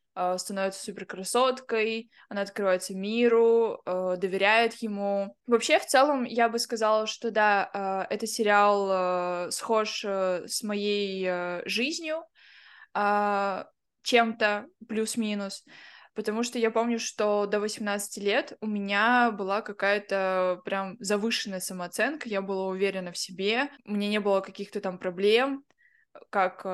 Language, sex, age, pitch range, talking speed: Russian, female, 20-39, 195-230 Hz, 115 wpm